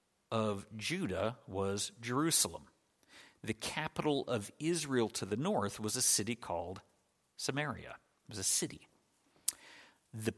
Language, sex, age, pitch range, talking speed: English, male, 50-69, 110-145 Hz, 120 wpm